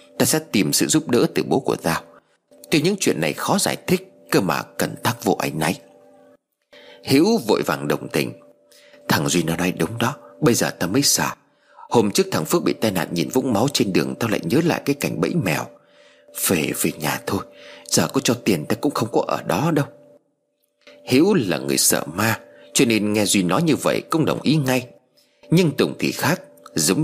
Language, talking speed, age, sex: Vietnamese, 215 wpm, 30-49, male